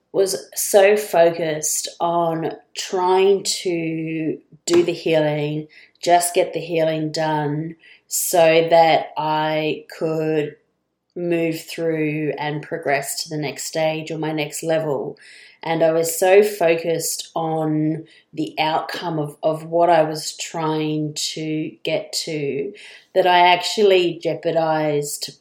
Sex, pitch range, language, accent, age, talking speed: female, 155-170 Hz, English, Australian, 30-49, 120 wpm